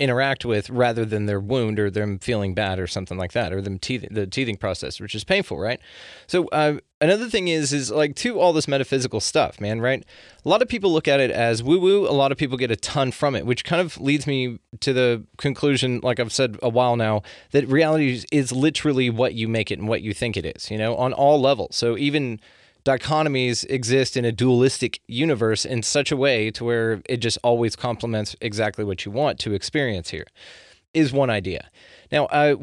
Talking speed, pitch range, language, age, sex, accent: 215 wpm, 110-135 Hz, English, 20-39, male, American